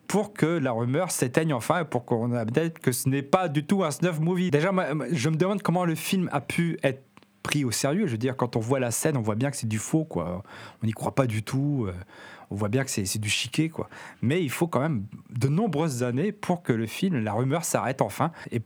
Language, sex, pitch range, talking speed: French, male, 120-165 Hz, 255 wpm